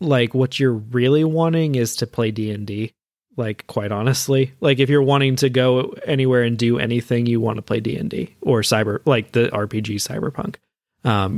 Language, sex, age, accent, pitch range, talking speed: English, male, 20-39, American, 110-130 Hz, 200 wpm